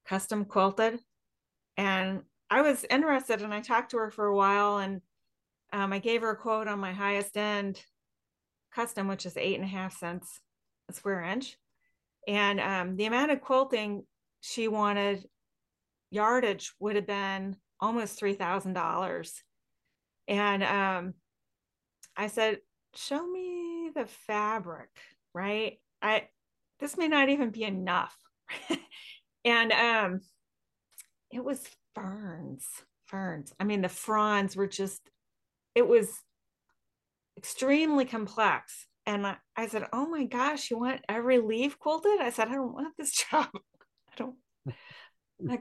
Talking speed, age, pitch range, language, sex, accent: 140 wpm, 30-49, 200-275 Hz, English, female, American